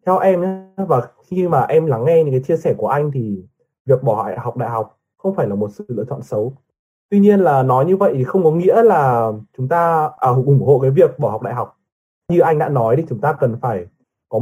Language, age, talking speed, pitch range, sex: Vietnamese, 20-39, 245 wpm, 125-175 Hz, male